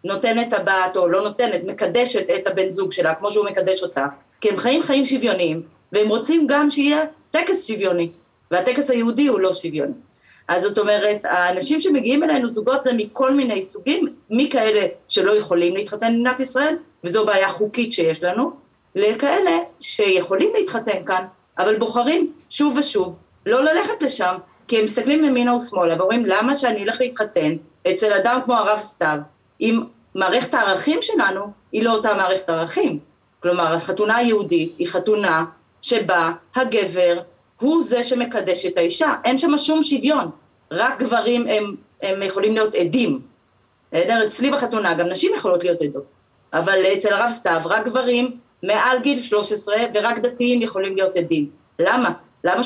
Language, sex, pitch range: Hebrew, female, 180-255 Hz